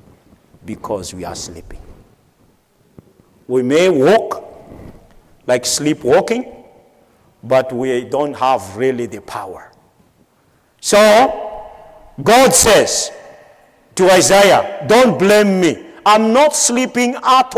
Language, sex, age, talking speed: English, male, 50-69, 95 wpm